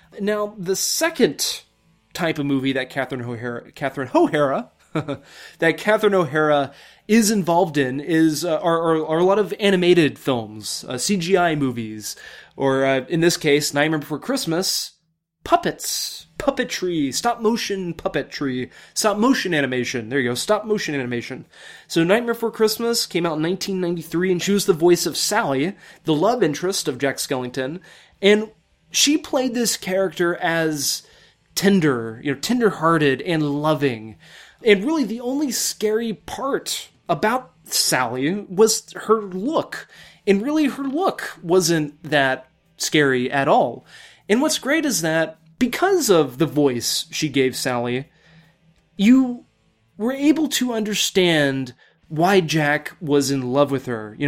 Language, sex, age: English, male, 20-39